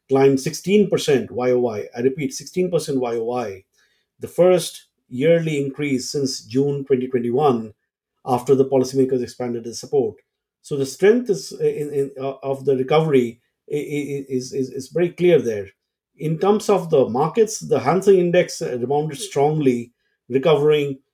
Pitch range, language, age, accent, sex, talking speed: 125-150 Hz, English, 50-69, Indian, male, 135 wpm